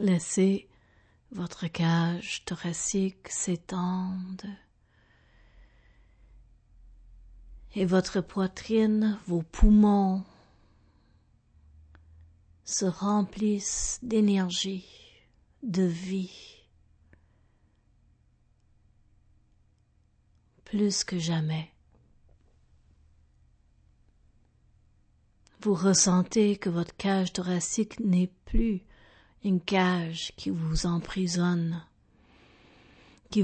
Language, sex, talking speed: French, female, 55 wpm